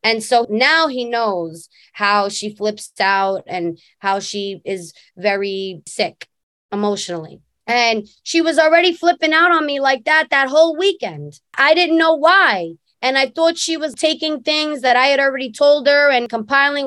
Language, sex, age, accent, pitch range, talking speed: English, female, 20-39, American, 220-320 Hz, 170 wpm